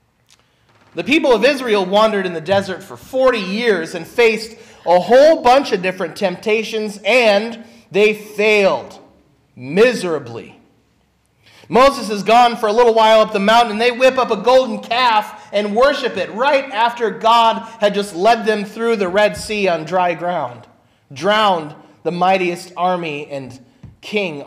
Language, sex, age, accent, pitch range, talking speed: English, male, 30-49, American, 165-225 Hz, 155 wpm